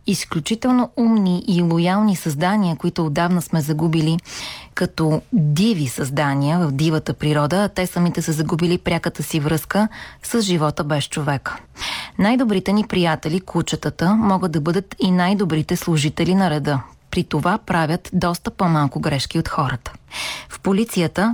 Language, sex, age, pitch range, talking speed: Bulgarian, female, 30-49, 155-195 Hz, 140 wpm